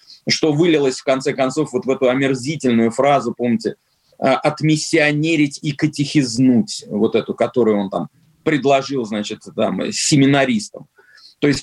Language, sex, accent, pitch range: Russian, male, native, 140-175 Hz